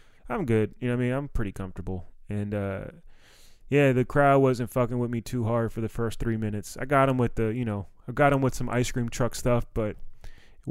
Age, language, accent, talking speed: 20-39, English, American, 245 wpm